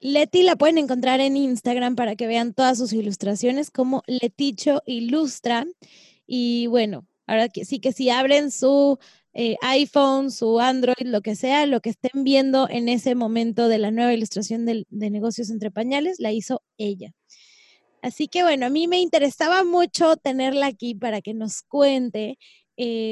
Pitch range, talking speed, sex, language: 230-275 Hz, 165 wpm, female, Spanish